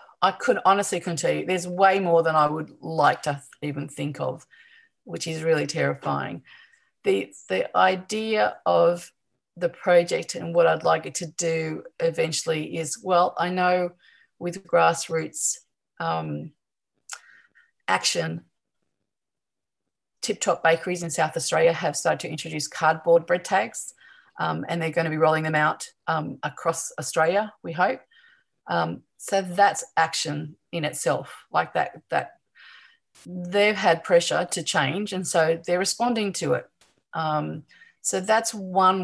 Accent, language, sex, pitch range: Australian, English, female, 160-190 Hz